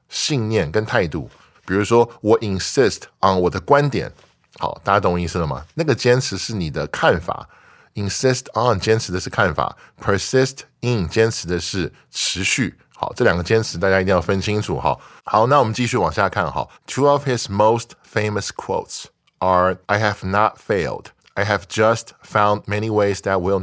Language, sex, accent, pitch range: Chinese, male, American, 90-115 Hz